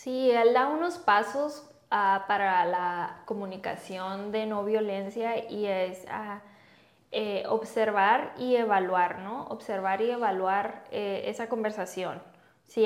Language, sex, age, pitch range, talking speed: Spanish, female, 10-29, 195-230 Hz, 115 wpm